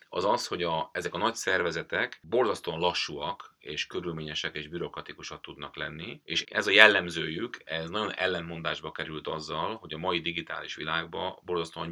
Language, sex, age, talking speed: Hungarian, male, 30-49, 155 wpm